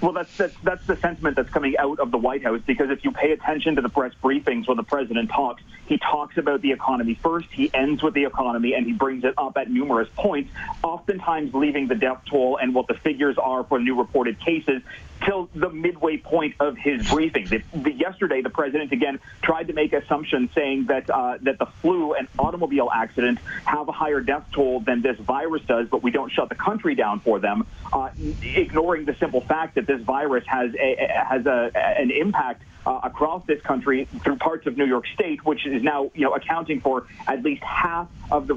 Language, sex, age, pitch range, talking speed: English, male, 30-49, 130-165 Hz, 220 wpm